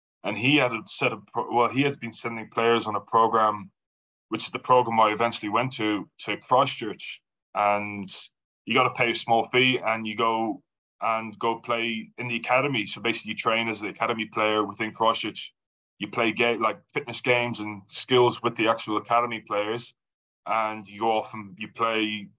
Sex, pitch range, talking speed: male, 110-120 Hz, 195 wpm